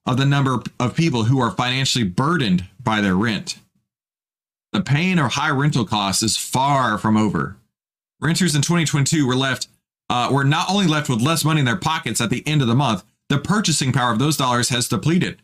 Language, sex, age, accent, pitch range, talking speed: English, male, 30-49, American, 115-160 Hz, 200 wpm